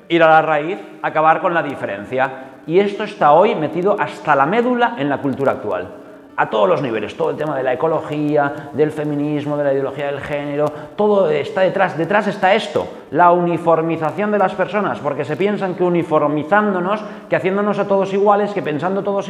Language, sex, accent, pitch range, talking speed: Spanish, male, Spanish, 140-185 Hz, 190 wpm